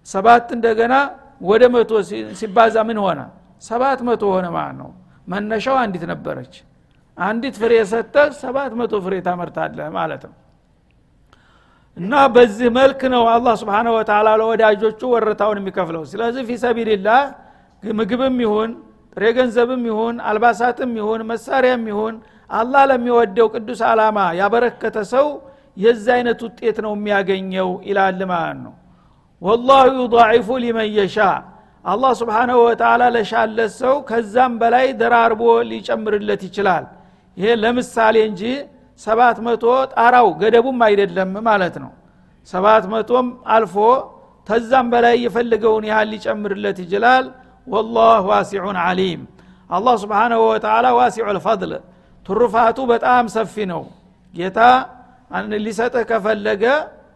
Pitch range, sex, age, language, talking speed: 210-245 Hz, male, 60-79, Amharic, 95 wpm